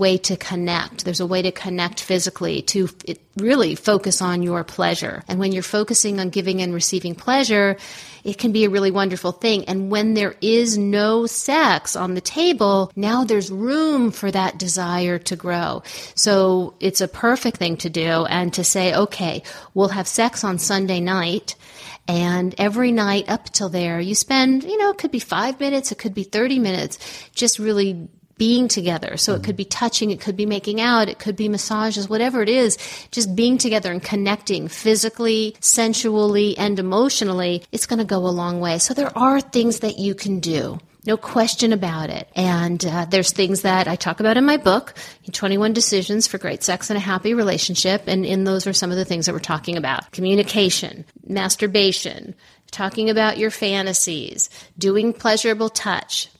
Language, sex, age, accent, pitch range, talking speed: English, female, 40-59, American, 185-220 Hz, 185 wpm